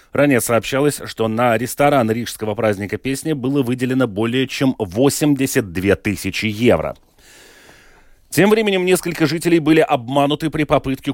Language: Russian